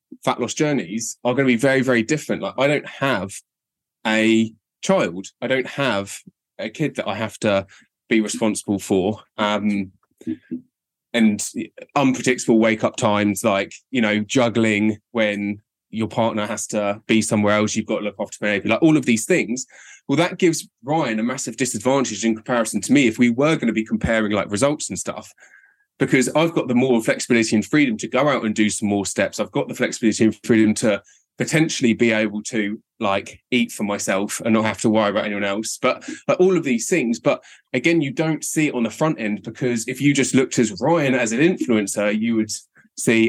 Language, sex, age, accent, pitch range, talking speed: English, male, 20-39, British, 105-130 Hz, 200 wpm